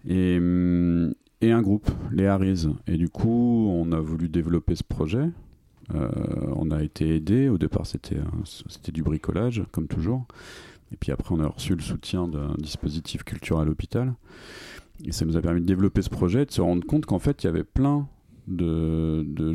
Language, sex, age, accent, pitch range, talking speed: French, male, 40-59, French, 80-105 Hz, 185 wpm